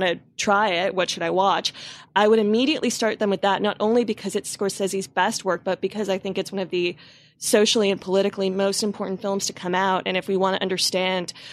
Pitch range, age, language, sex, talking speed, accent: 185-215 Hz, 20-39, English, female, 230 wpm, American